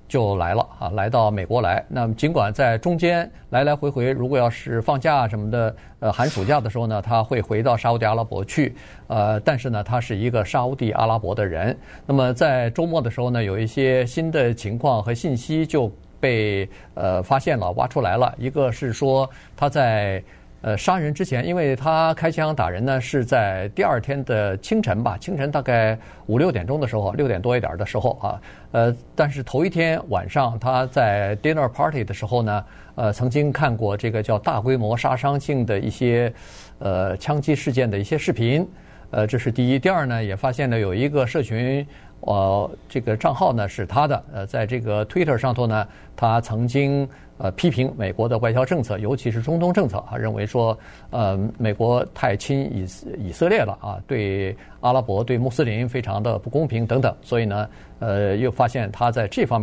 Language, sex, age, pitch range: Chinese, male, 50-69, 105-135 Hz